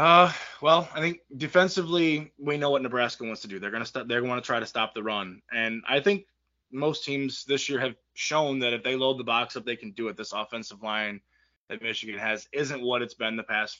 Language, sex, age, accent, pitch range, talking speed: English, male, 20-39, American, 105-135 Hz, 245 wpm